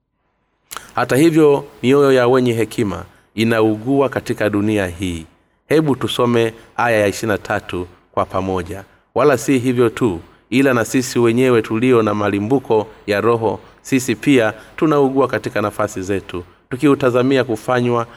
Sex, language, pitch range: male, Swahili, 100-125 Hz